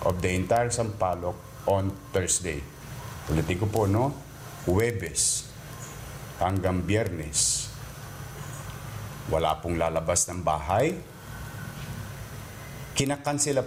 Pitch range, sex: 100-135 Hz, male